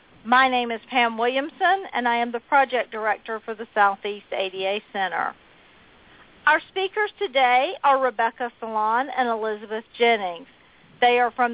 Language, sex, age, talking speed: English, female, 50-69, 145 wpm